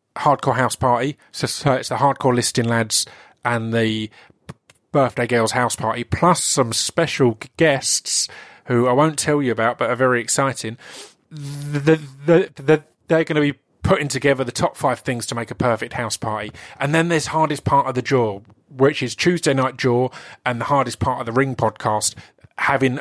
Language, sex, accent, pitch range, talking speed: English, male, British, 115-145 Hz, 175 wpm